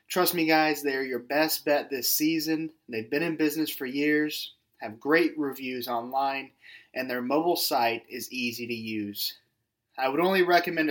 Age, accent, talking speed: 20-39, American, 170 wpm